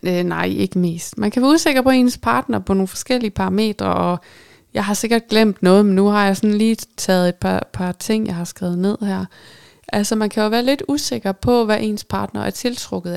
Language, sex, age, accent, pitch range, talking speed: Danish, female, 20-39, native, 180-220 Hz, 225 wpm